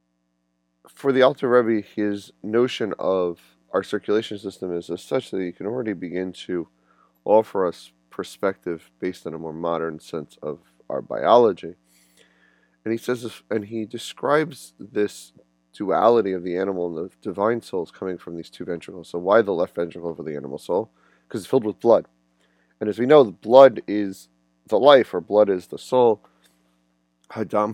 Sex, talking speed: male, 175 wpm